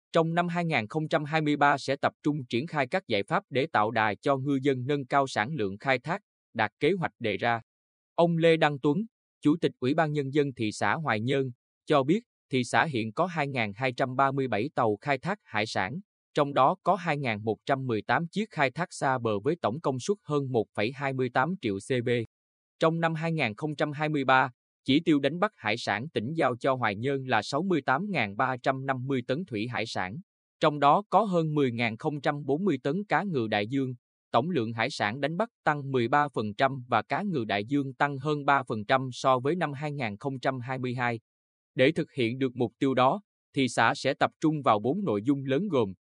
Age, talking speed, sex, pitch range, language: 20-39, 180 wpm, male, 120-150 Hz, Vietnamese